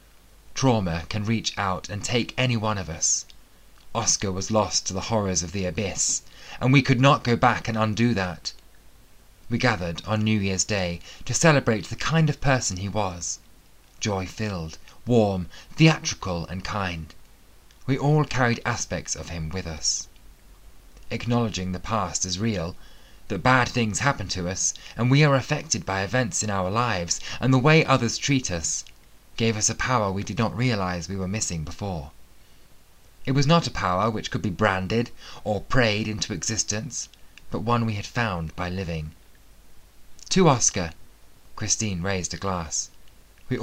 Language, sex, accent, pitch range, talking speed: English, male, British, 90-120 Hz, 165 wpm